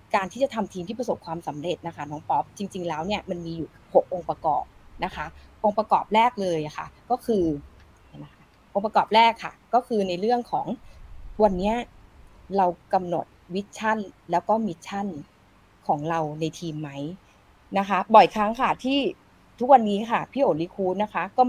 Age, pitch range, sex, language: 20-39, 170-230 Hz, female, Thai